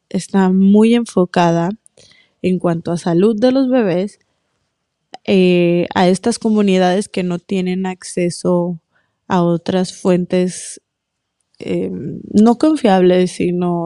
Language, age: Spanish, 20-39